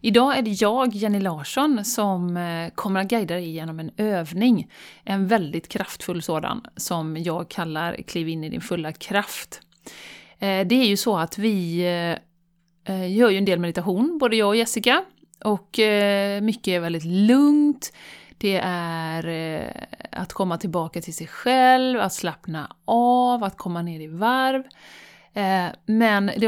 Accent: native